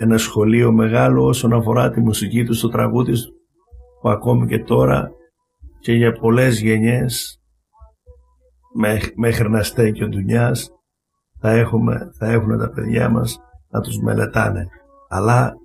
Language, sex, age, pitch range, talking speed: Greek, male, 60-79, 90-120 Hz, 140 wpm